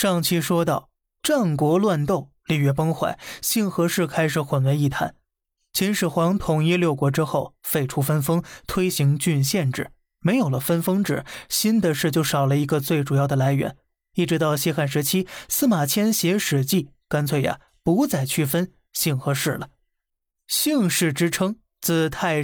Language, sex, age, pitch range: Chinese, male, 20-39, 140-175 Hz